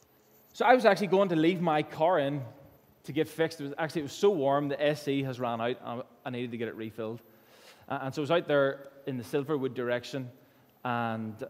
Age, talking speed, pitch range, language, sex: 20-39, 225 wpm, 130-165 Hz, English, male